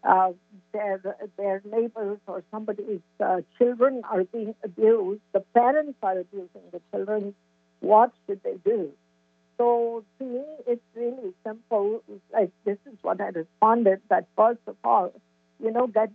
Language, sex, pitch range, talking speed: English, female, 195-255 Hz, 145 wpm